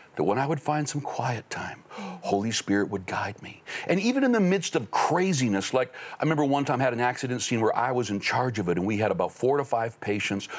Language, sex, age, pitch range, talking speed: English, male, 60-79, 110-150 Hz, 255 wpm